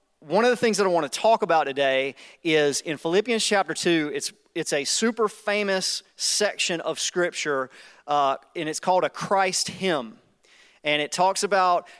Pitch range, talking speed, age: 160-205 Hz, 170 wpm, 30-49